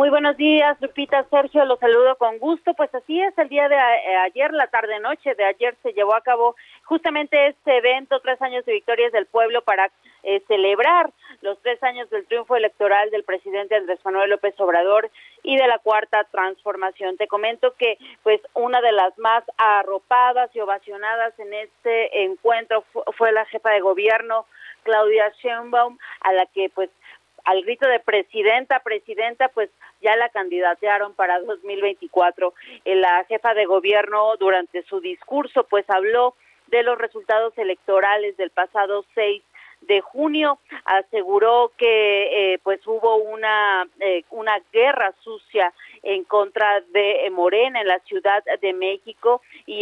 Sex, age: female, 40-59